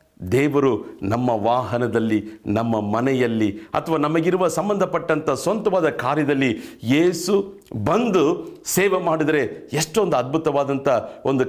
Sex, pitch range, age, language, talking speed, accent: male, 125-200 Hz, 50-69, Kannada, 90 wpm, native